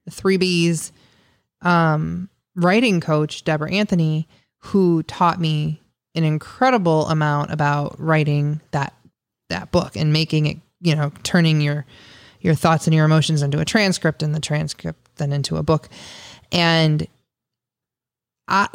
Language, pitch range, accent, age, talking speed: English, 150-180 Hz, American, 20-39, 140 wpm